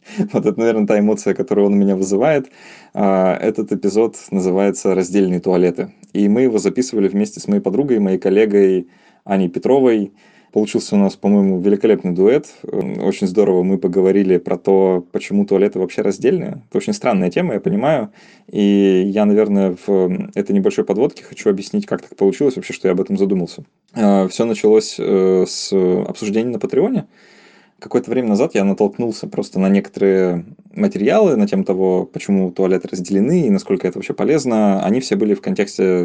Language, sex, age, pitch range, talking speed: Russian, male, 20-39, 95-115 Hz, 165 wpm